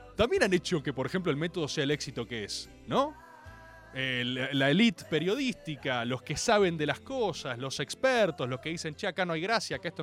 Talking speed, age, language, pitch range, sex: 215 wpm, 30-49, Spanish, 140-220 Hz, male